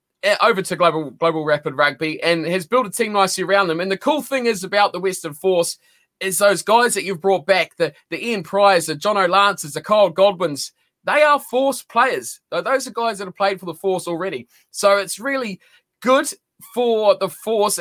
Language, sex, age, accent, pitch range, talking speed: English, male, 20-39, Australian, 170-205 Hz, 210 wpm